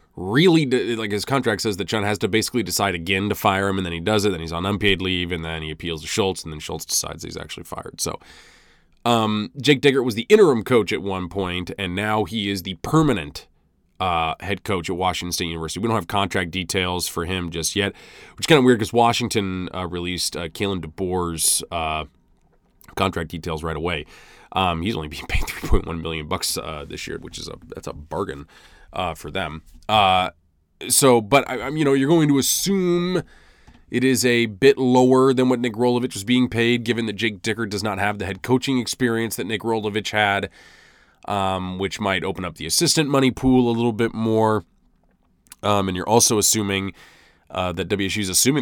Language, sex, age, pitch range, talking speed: English, male, 20-39, 90-115 Hz, 205 wpm